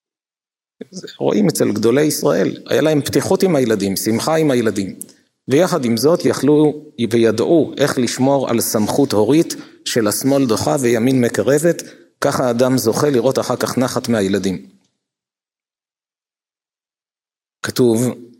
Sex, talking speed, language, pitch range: male, 115 wpm, Hebrew, 115-140 Hz